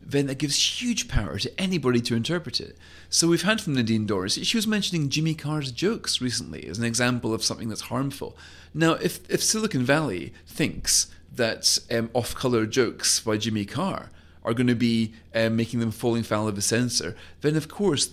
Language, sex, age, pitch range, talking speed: English, male, 40-59, 100-130 Hz, 190 wpm